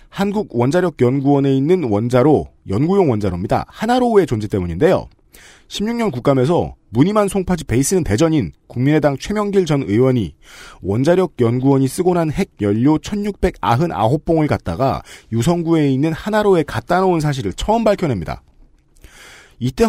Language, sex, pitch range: Korean, male, 125-180 Hz